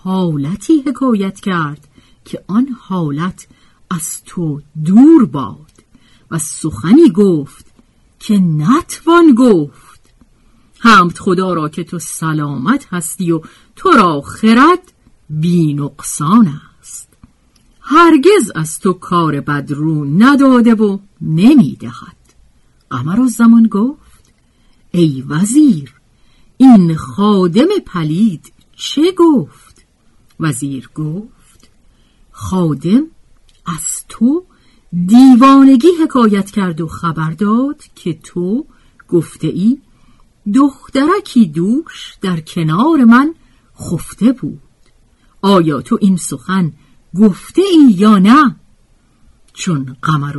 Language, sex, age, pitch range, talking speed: Persian, female, 50-69, 155-245 Hz, 95 wpm